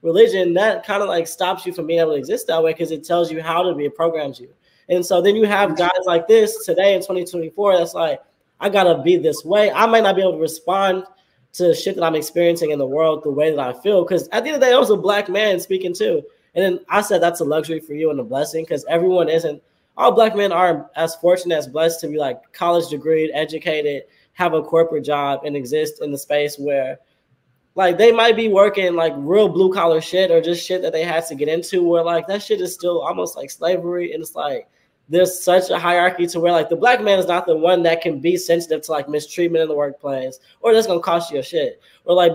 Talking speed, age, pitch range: 255 wpm, 20-39, 160-190 Hz